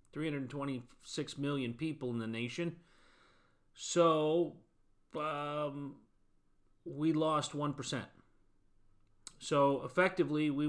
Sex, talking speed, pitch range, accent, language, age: male, 80 wpm, 130-160 Hz, American, English, 30-49